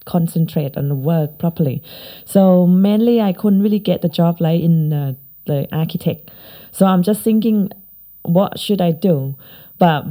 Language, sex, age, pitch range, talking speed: English, female, 20-39, 165-195 Hz, 160 wpm